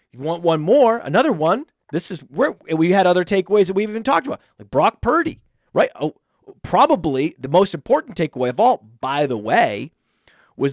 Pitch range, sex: 125-185 Hz, male